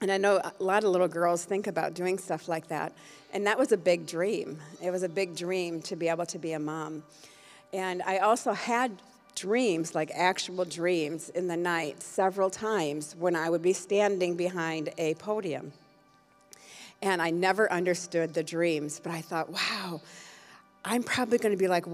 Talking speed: 185 wpm